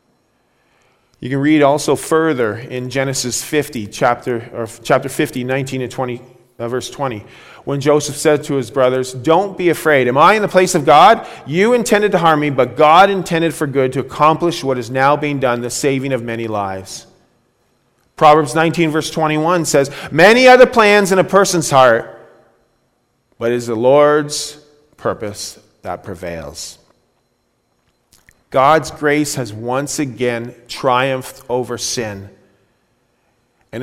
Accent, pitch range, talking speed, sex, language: American, 125-160 Hz, 155 wpm, male, English